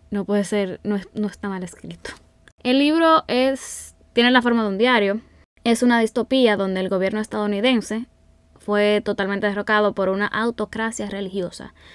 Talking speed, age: 150 wpm, 10-29